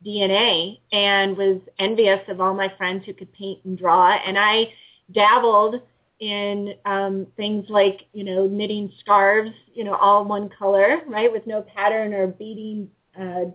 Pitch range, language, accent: 195-225 Hz, English, American